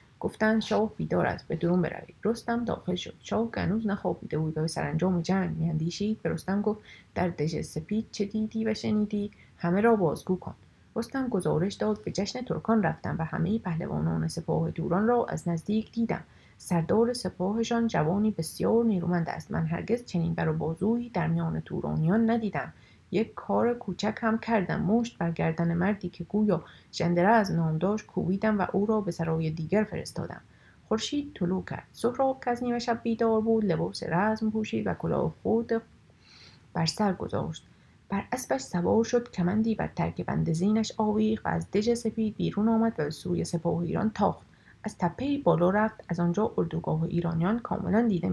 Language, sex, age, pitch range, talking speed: Persian, female, 30-49, 170-220 Hz, 175 wpm